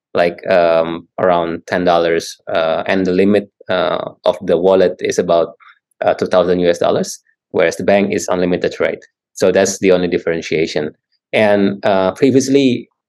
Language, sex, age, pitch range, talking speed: English, male, 20-39, 95-120 Hz, 155 wpm